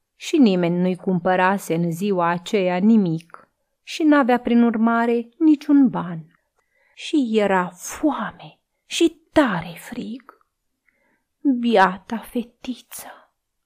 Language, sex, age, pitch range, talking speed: Romanian, female, 30-49, 190-270 Hz, 95 wpm